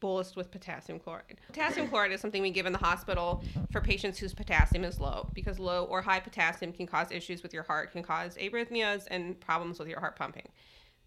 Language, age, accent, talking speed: English, 20-39, American, 210 wpm